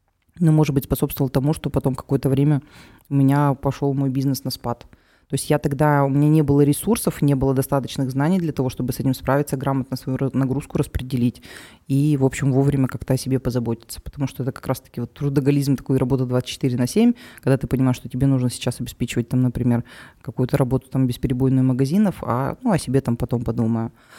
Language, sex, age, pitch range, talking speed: Russian, female, 20-39, 125-140 Hz, 200 wpm